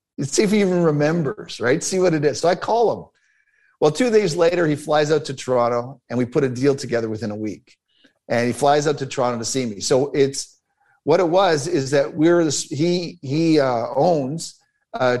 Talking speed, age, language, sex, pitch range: 220 wpm, 50-69, English, male, 120-150 Hz